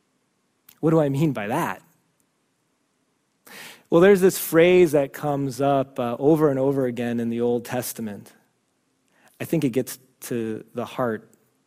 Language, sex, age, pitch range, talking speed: English, male, 30-49, 130-205 Hz, 150 wpm